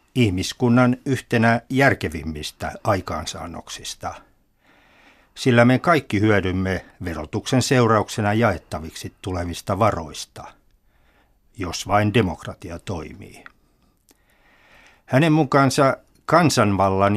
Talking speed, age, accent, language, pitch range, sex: 70 wpm, 60-79, native, Finnish, 95-125 Hz, male